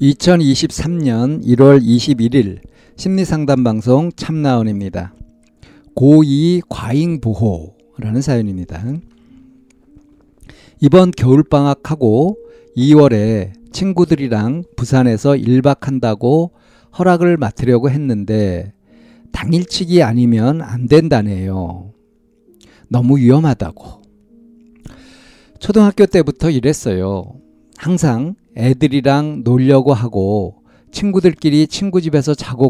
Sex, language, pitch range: male, Korean, 110-155 Hz